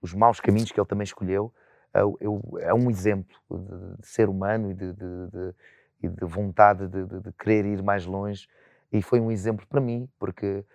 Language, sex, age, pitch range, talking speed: Portuguese, male, 30-49, 100-120 Hz, 205 wpm